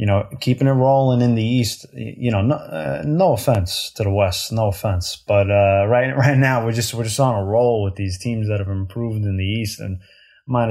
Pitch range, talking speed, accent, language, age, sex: 100-135 Hz, 235 wpm, American, English, 20-39, male